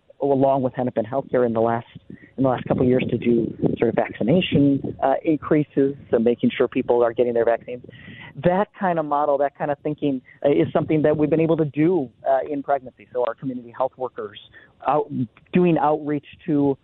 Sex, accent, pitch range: male, American, 125-150 Hz